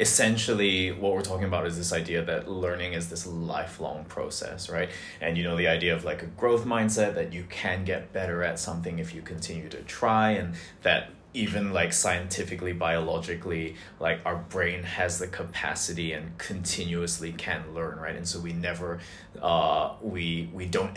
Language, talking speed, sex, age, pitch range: English, 175 wpm, male, 20-39, 85-95 Hz